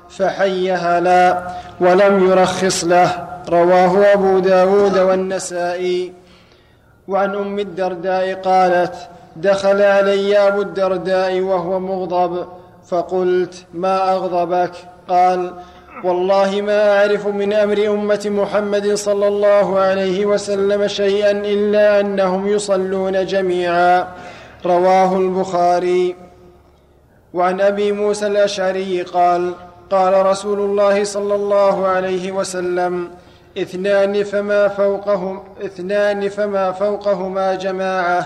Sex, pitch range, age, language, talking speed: male, 180-200 Hz, 20-39, Arabic, 90 wpm